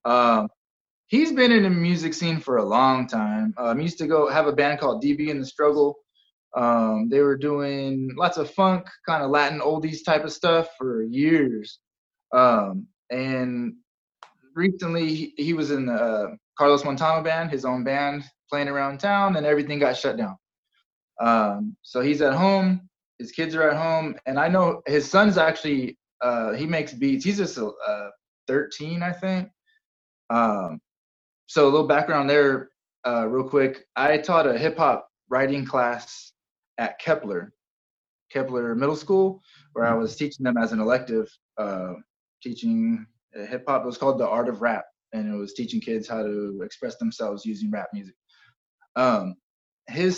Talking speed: 170 wpm